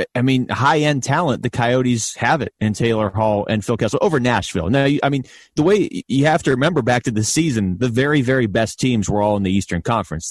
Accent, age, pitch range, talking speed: American, 30-49, 100-130 Hz, 235 wpm